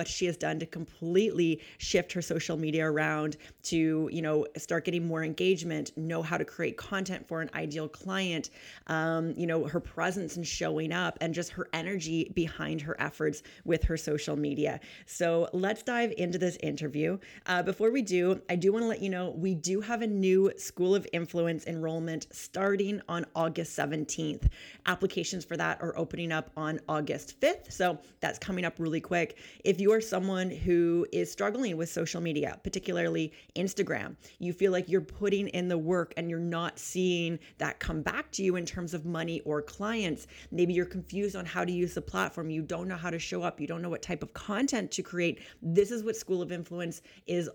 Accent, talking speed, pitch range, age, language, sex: American, 200 wpm, 165-190 Hz, 30-49, English, female